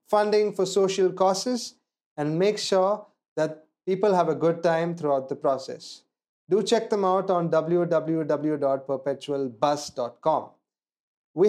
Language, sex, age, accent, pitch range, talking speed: English, male, 30-49, Indian, 160-210 Hz, 120 wpm